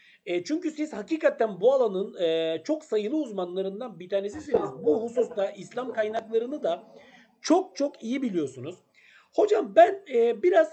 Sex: male